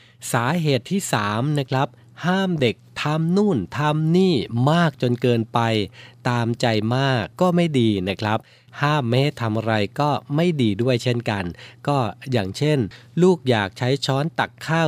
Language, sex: Thai, male